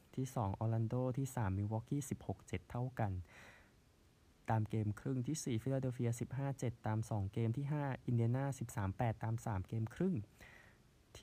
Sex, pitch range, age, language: male, 100-125 Hz, 20-39, Thai